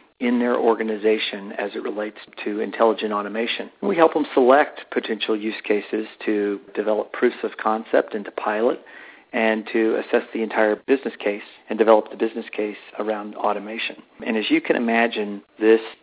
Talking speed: 165 wpm